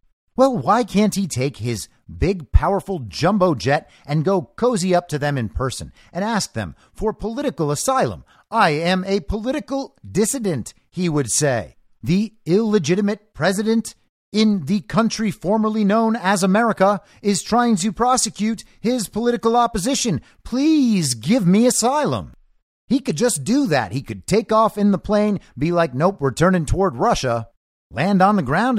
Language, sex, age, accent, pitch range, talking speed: English, male, 50-69, American, 145-220 Hz, 160 wpm